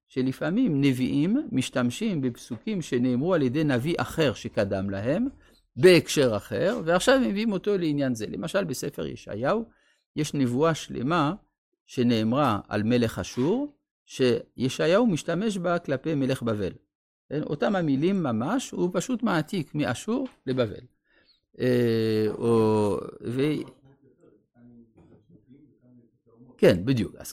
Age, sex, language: 50-69, male, Hebrew